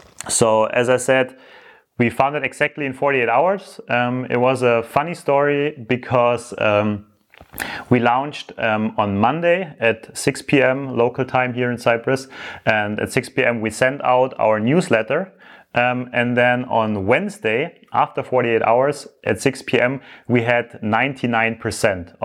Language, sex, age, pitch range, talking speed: English, male, 30-49, 115-135 Hz, 150 wpm